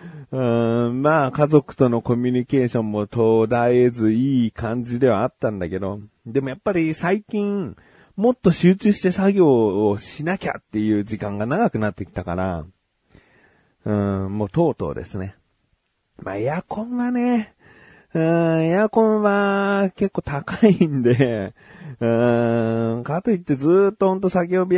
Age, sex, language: 40-59, male, Japanese